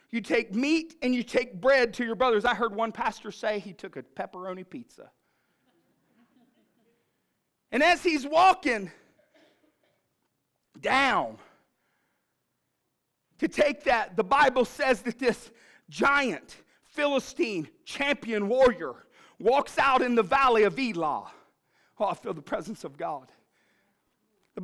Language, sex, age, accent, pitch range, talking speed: English, male, 40-59, American, 245-320 Hz, 125 wpm